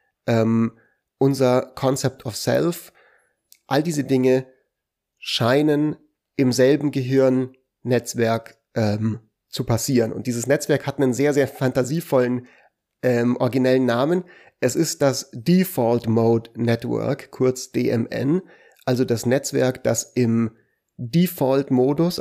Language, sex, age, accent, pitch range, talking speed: German, male, 30-49, German, 120-140 Hz, 105 wpm